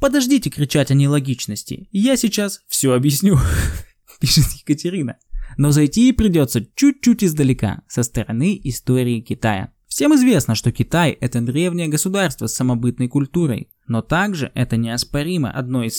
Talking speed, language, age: 130 wpm, Russian, 20-39